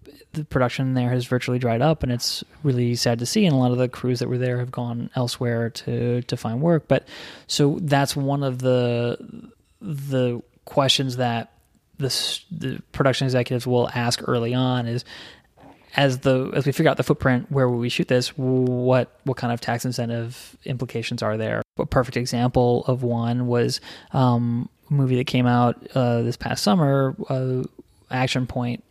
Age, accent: 20-39, American